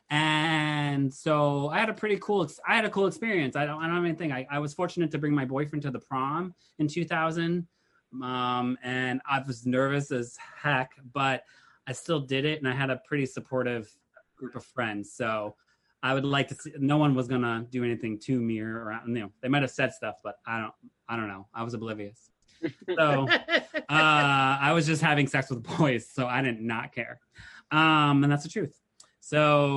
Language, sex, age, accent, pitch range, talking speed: English, male, 20-39, American, 120-150 Hz, 210 wpm